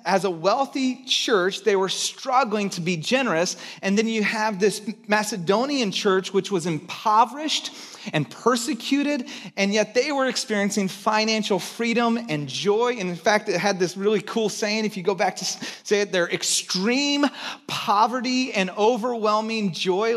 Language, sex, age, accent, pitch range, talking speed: English, male, 30-49, American, 185-230 Hz, 160 wpm